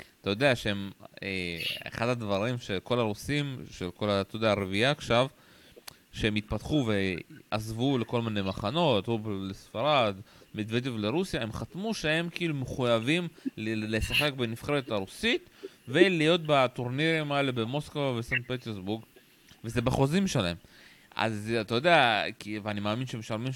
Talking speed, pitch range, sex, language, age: 120 wpm, 110-140 Hz, male, Hebrew, 30-49